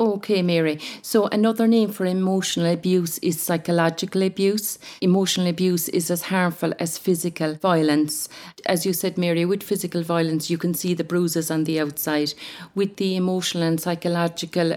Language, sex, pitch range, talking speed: English, female, 160-180 Hz, 160 wpm